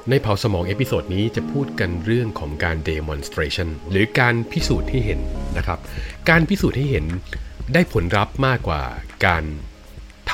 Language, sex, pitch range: Thai, male, 85-115 Hz